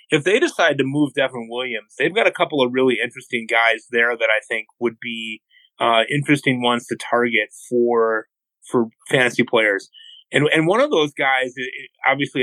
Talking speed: 185 wpm